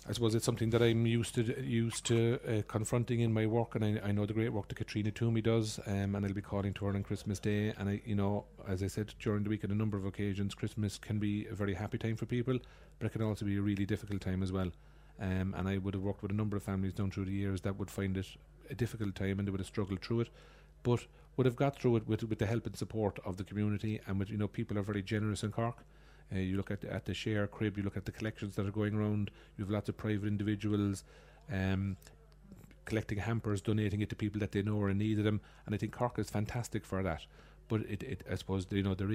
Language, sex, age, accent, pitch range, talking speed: English, male, 30-49, Irish, 100-110 Hz, 275 wpm